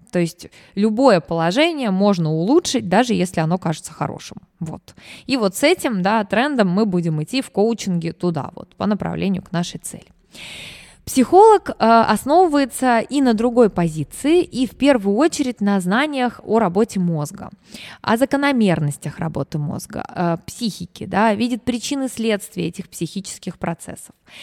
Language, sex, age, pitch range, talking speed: Russian, female, 20-39, 180-255 Hz, 140 wpm